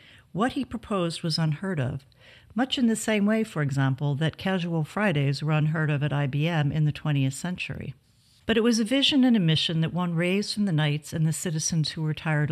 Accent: American